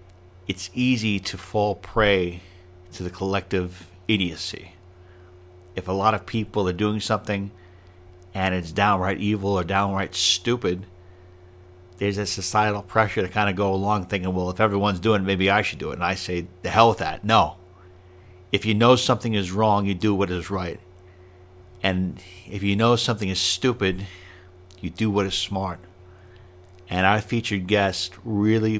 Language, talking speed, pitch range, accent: English, 165 wpm, 90-105 Hz, American